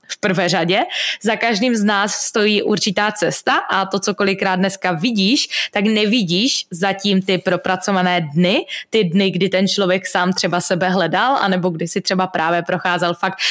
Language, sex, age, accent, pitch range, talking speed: Czech, female, 20-39, native, 180-210 Hz, 170 wpm